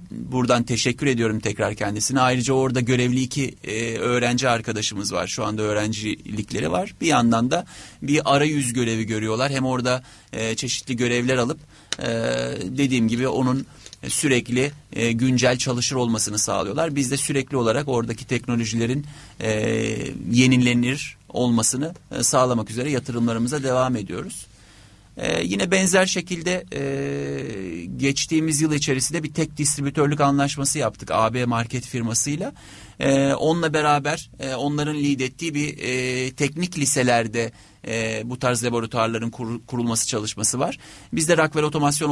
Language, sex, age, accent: Turkish, male, 30-49, native